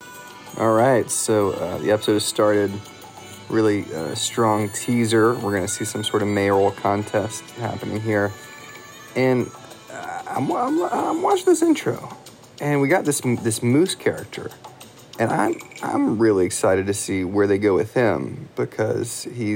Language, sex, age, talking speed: English, male, 30-49, 155 wpm